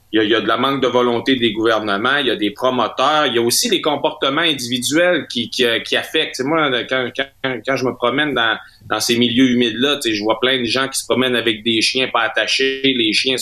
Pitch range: 115-140 Hz